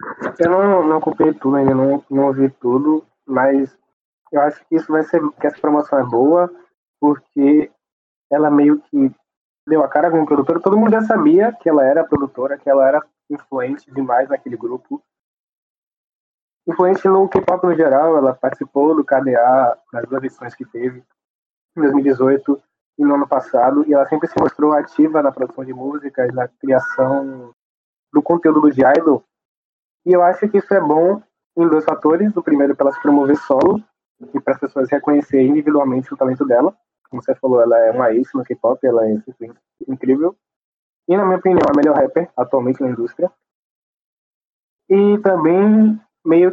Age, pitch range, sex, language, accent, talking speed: 20-39, 135-175 Hz, male, Portuguese, Brazilian, 175 wpm